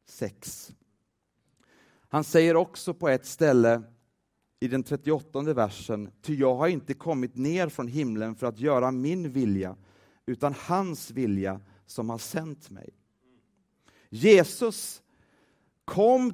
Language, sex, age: Swedish, male, 40-59